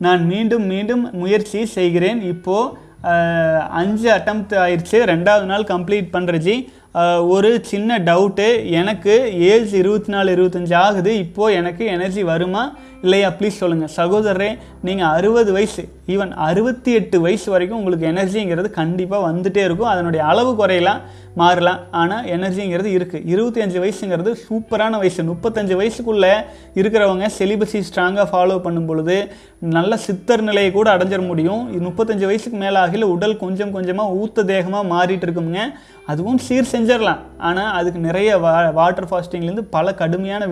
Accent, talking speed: native, 135 wpm